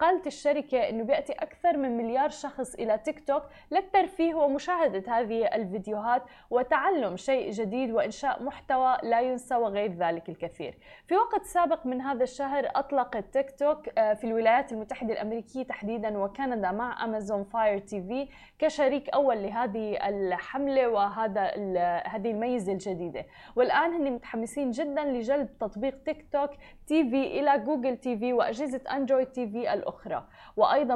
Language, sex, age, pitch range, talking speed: Arabic, female, 10-29, 220-280 Hz, 145 wpm